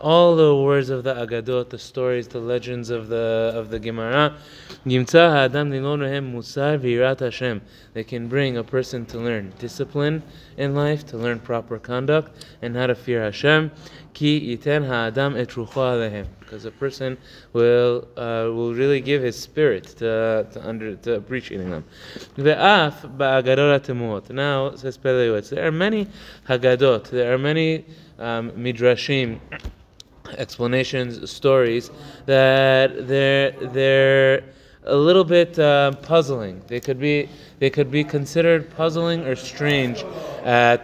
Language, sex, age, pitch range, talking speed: English, male, 20-39, 120-150 Hz, 120 wpm